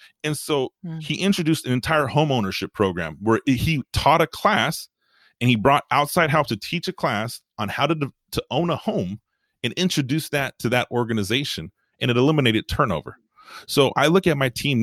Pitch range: 115-155 Hz